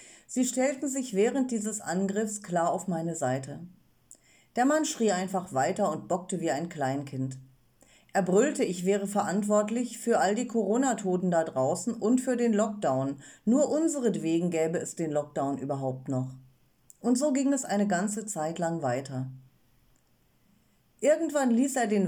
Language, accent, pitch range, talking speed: German, German, 155-220 Hz, 150 wpm